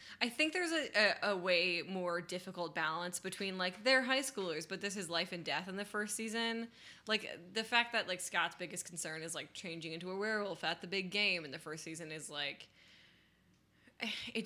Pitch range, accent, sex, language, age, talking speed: 160-200 Hz, American, female, English, 10-29, 210 wpm